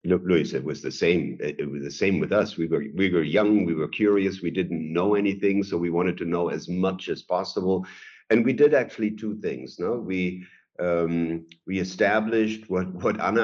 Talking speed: 205 wpm